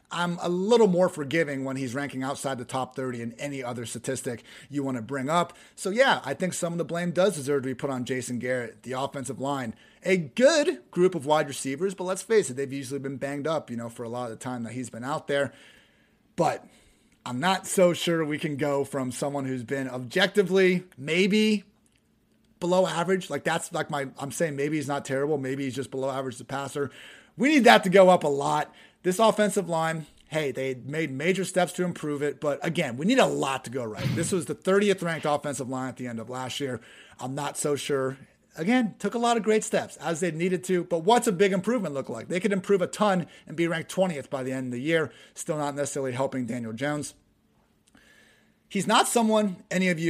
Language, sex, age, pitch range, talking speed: English, male, 30-49, 130-180 Hz, 230 wpm